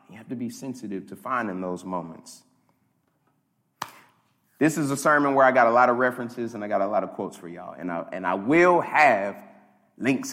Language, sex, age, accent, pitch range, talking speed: English, male, 30-49, American, 115-155 Hz, 210 wpm